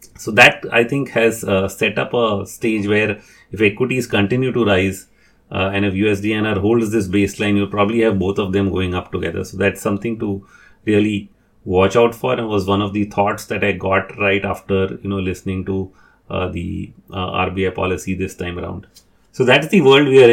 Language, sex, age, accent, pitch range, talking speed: English, male, 30-49, Indian, 95-115 Hz, 210 wpm